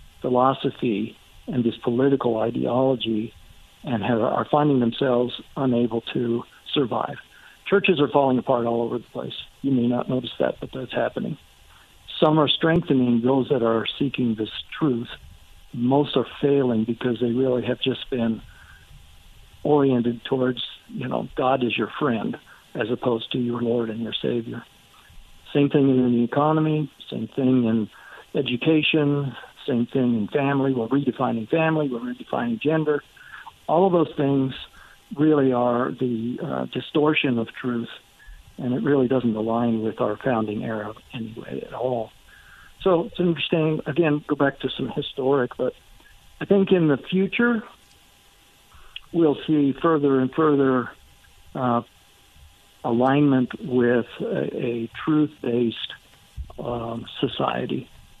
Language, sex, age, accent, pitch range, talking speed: English, male, 60-79, American, 115-145 Hz, 135 wpm